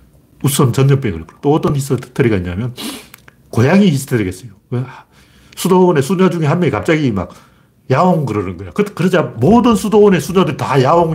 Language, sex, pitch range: Korean, male, 95-155 Hz